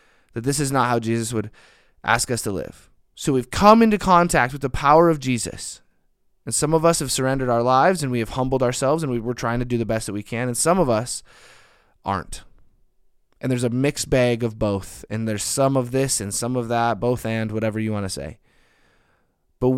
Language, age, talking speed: English, 20-39, 225 wpm